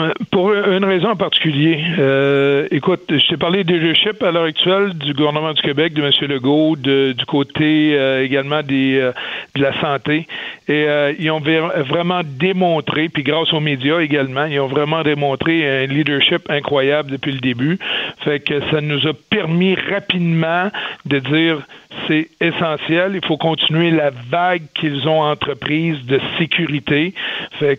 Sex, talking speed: male, 160 wpm